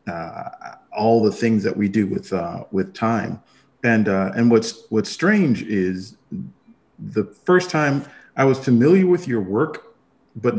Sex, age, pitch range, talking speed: male, 40-59, 95-130 Hz, 160 wpm